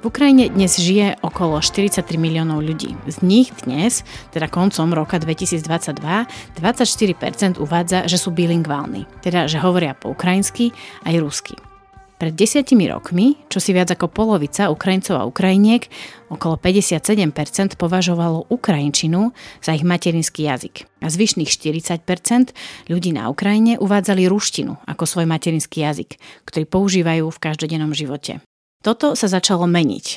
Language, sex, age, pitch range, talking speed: Slovak, female, 30-49, 160-200 Hz, 135 wpm